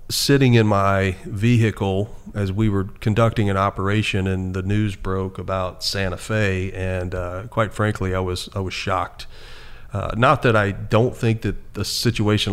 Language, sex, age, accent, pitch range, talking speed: English, male, 40-59, American, 95-110 Hz, 170 wpm